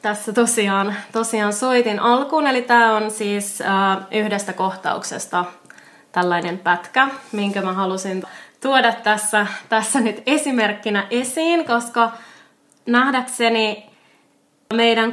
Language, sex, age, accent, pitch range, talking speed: Finnish, female, 20-39, native, 195-230 Hz, 105 wpm